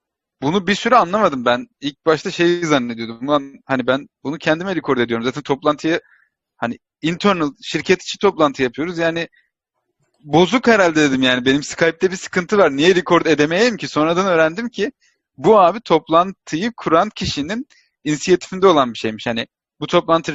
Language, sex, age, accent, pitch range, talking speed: Turkish, male, 40-59, native, 145-180 Hz, 155 wpm